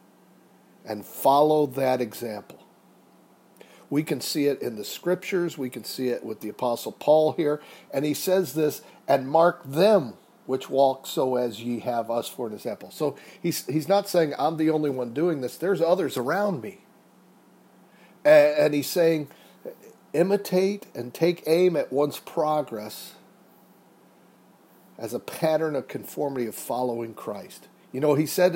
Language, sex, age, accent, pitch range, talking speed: English, male, 50-69, American, 125-165 Hz, 160 wpm